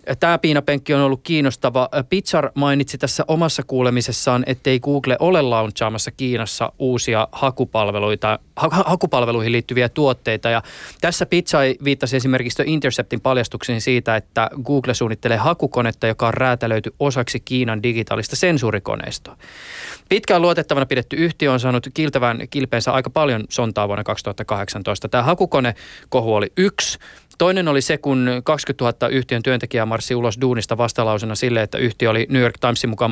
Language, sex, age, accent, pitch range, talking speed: Finnish, male, 20-39, native, 115-140 Hz, 140 wpm